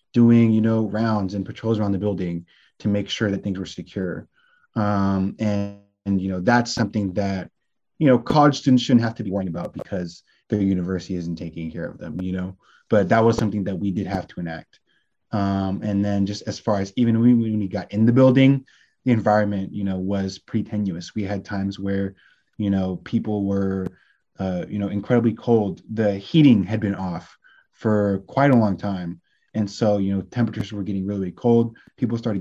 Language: English